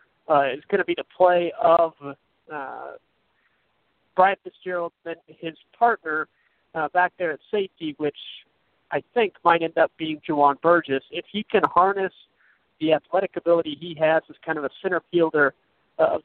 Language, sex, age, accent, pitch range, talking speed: English, male, 40-59, American, 145-170 Hz, 165 wpm